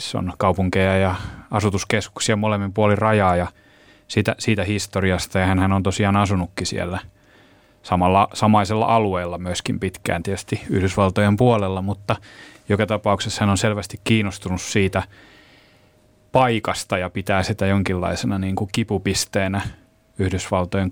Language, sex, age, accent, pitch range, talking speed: Finnish, male, 30-49, native, 95-105 Hz, 120 wpm